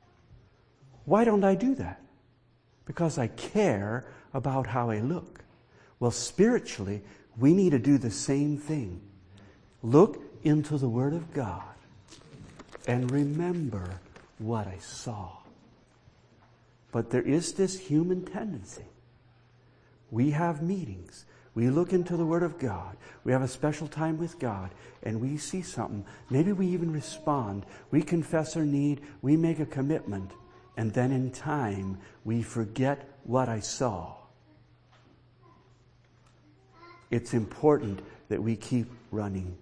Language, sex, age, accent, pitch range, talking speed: English, male, 50-69, American, 110-145 Hz, 130 wpm